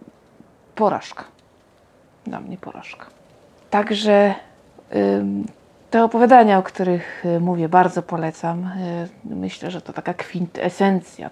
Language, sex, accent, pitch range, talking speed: Polish, female, native, 155-180 Hz, 90 wpm